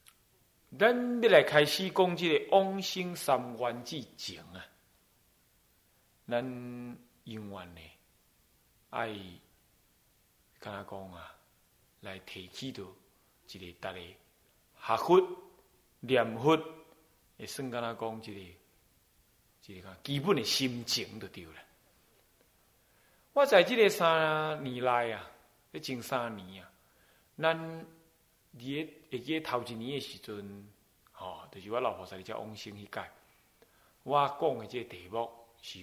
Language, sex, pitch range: Chinese, male, 110-160 Hz